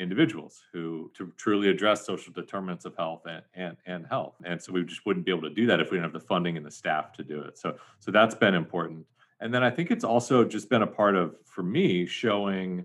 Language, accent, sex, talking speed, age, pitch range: English, American, male, 250 wpm, 40-59, 90-120 Hz